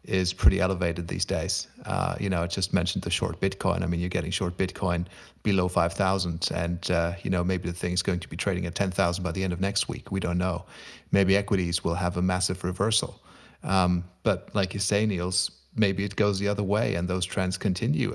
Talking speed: 230 wpm